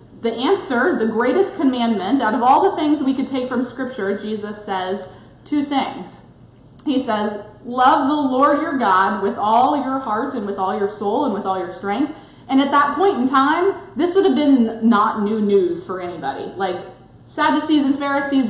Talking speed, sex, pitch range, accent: 190 wpm, female, 205-275 Hz, American